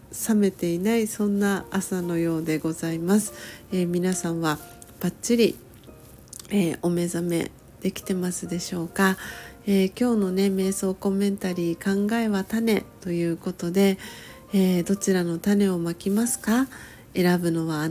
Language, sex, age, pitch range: Japanese, female, 40-59, 170-205 Hz